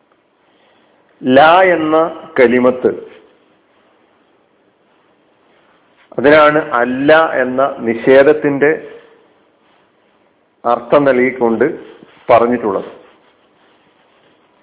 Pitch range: 130-170 Hz